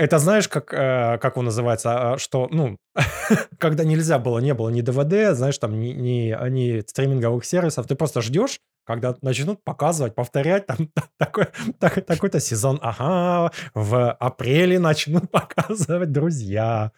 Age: 20-39